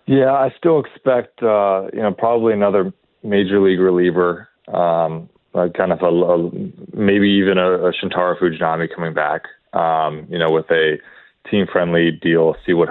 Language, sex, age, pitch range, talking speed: English, male, 30-49, 85-115 Hz, 150 wpm